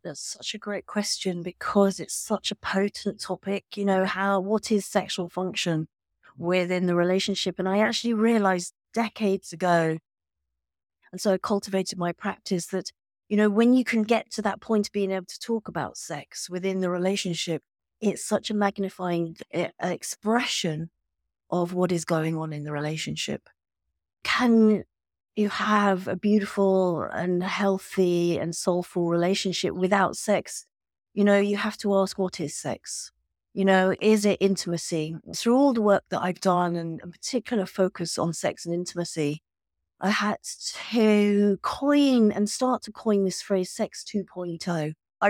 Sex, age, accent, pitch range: female, 40-59, British, 175-205 Hz